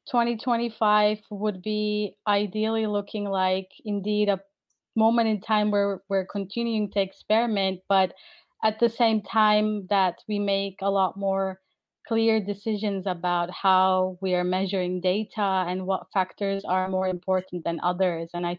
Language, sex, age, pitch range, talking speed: English, female, 30-49, 185-210 Hz, 145 wpm